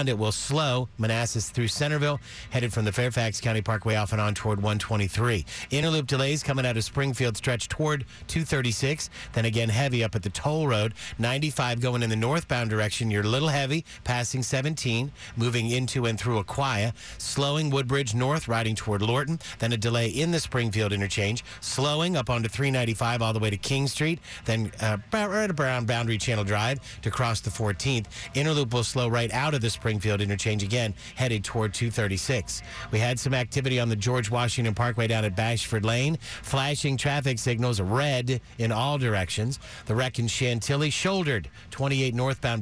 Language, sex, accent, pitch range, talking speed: English, male, American, 110-135 Hz, 175 wpm